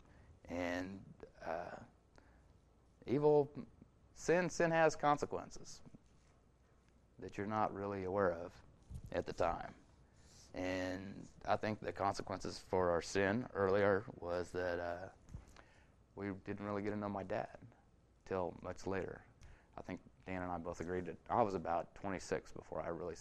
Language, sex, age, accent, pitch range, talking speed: English, male, 30-49, American, 85-105 Hz, 140 wpm